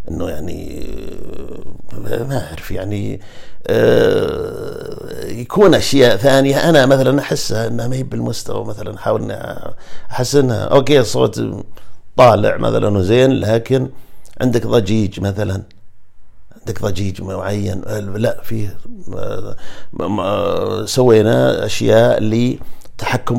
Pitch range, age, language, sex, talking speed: 105-125 Hz, 50-69, Arabic, male, 90 wpm